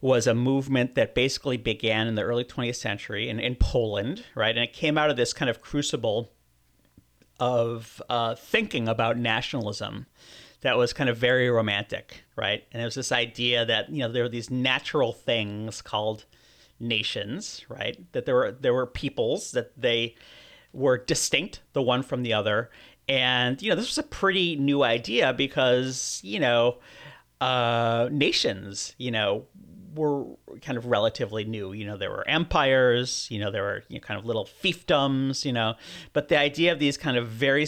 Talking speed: 180 wpm